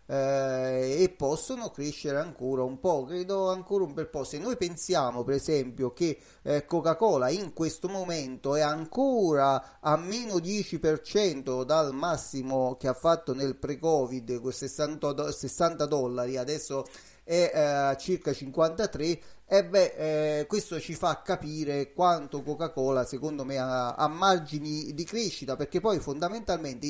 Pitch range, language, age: 135-170 Hz, Italian, 30-49